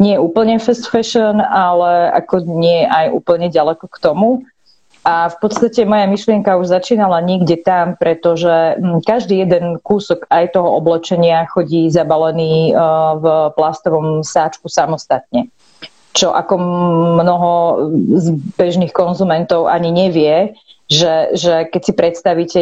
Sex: female